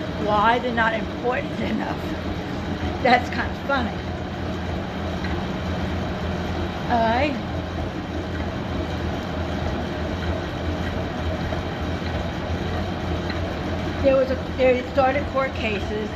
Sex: female